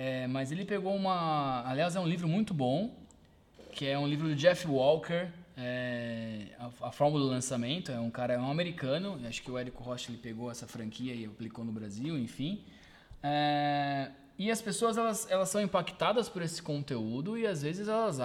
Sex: male